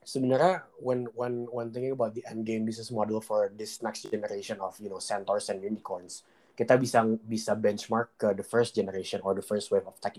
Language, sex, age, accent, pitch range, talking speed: Indonesian, male, 20-39, native, 110-135 Hz, 195 wpm